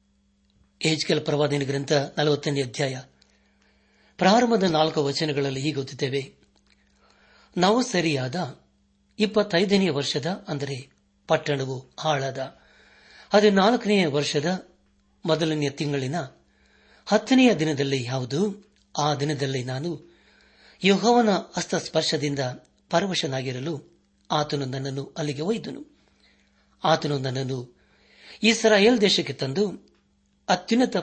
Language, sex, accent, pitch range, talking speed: Kannada, male, native, 135-175 Hz, 75 wpm